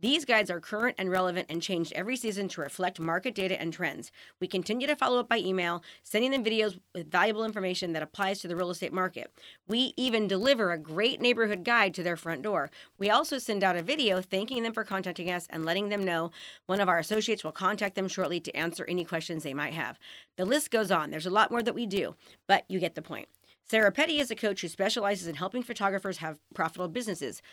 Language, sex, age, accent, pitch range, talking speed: English, female, 30-49, American, 175-220 Hz, 230 wpm